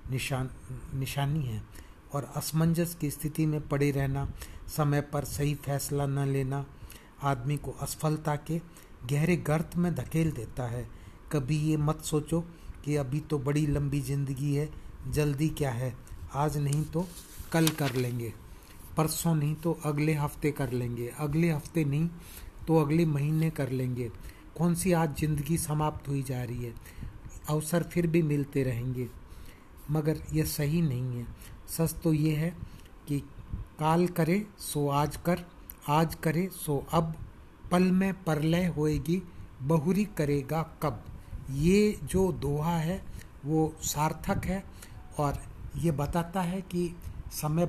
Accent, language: native, Hindi